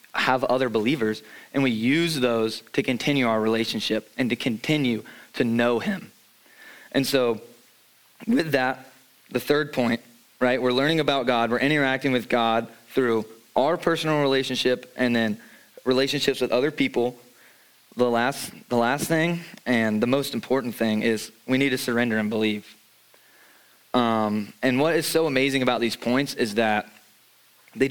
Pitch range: 115-140 Hz